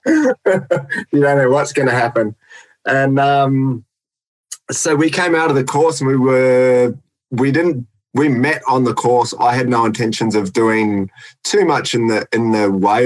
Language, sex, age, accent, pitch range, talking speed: English, male, 20-39, Australian, 100-130 Hz, 180 wpm